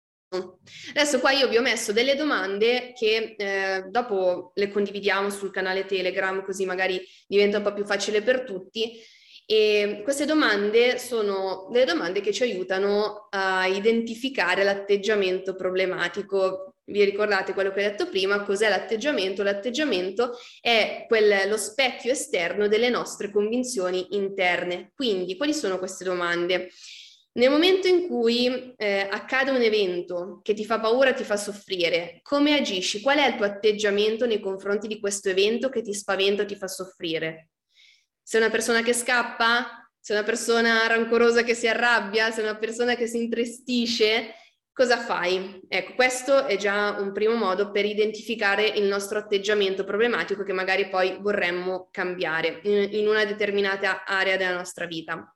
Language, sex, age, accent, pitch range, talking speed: Italian, female, 20-39, native, 190-235 Hz, 155 wpm